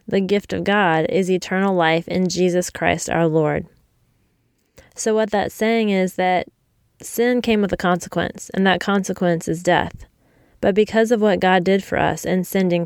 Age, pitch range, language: 20-39, 170-200 Hz, English